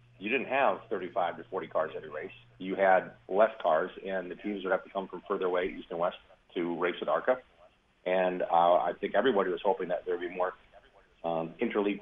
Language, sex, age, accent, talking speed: English, male, 40-59, American, 220 wpm